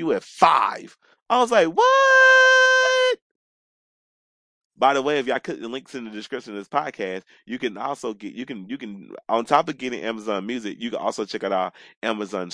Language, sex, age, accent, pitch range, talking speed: English, male, 30-49, American, 100-160 Hz, 200 wpm